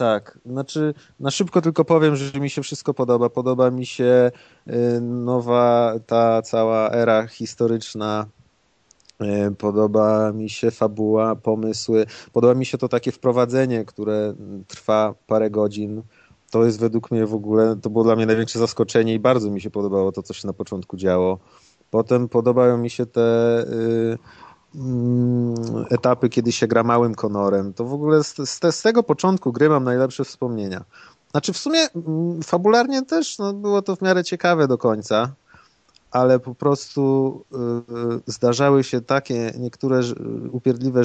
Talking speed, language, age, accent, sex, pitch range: 145 wpm, Polish, 30-49, native, male, 110-130 Hz